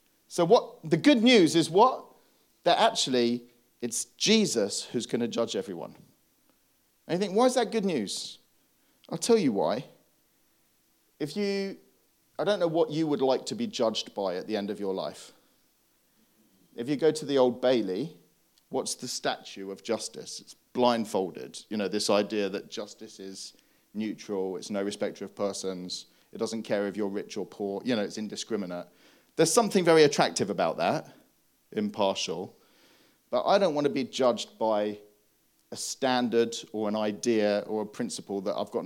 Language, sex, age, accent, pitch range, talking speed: English, male, 40-59, British, 105-150 Hz, 170 wpm